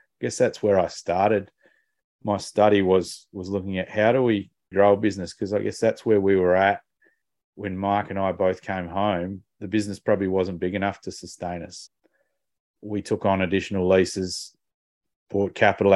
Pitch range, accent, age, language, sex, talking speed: 90-100 Hz, Australian, 30-49, English, male, 185 wpm